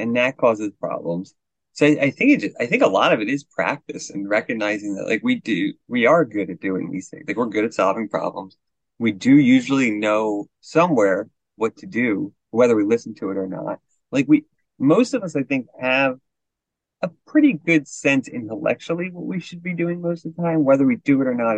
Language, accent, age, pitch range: English, American, 30-49, 115-160 Hz